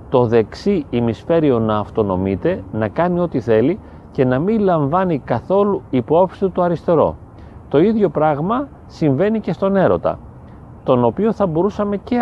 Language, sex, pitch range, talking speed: Greek, male, 110-175 Hz, 140 wpm